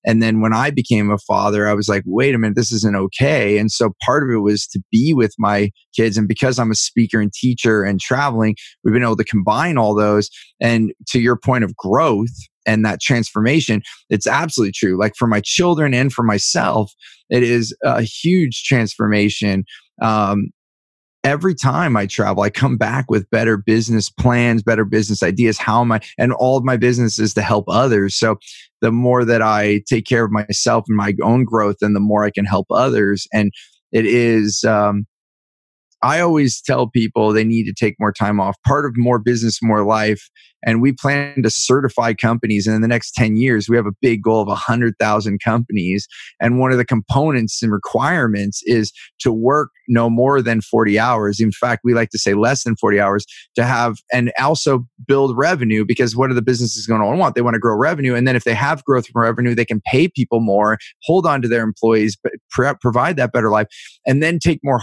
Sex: male